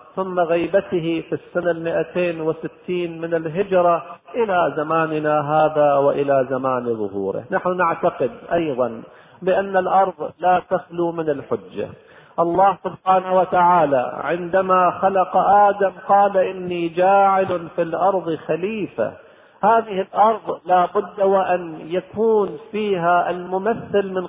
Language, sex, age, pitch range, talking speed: Arabic, male, 50-69, 155-190 Hz, 105 wpm